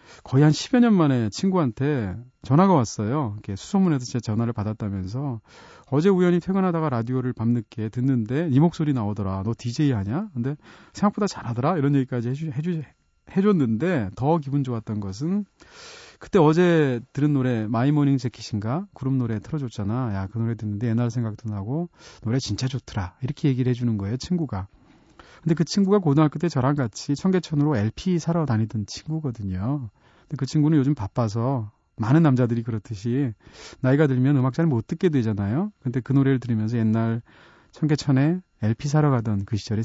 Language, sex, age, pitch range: Korean, male, 40-59, 110-150 Hz